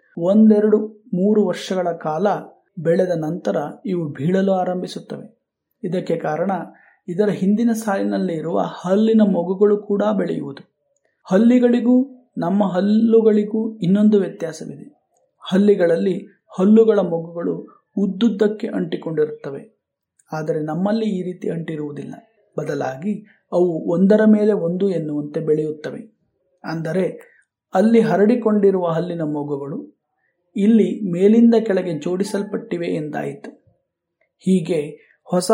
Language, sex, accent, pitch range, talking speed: Kannada, male, native, 165-215 Hz, 90 wpm